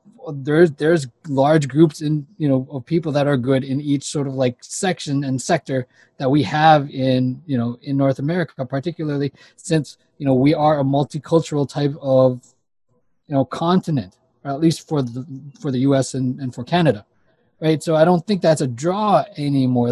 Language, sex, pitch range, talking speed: English, male, 130-165 Hz, 190 wpm